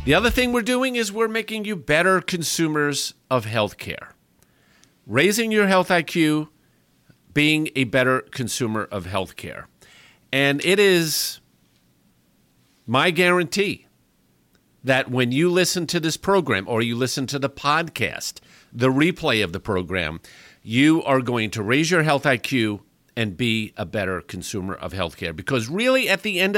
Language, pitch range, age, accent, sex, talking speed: English, 120-180 Hz, 50-69, American, male, 150 wpm